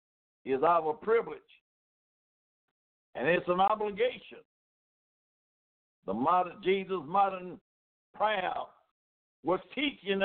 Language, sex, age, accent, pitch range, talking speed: English, male, 60-79, American, 170-235 Hz, 80 wpm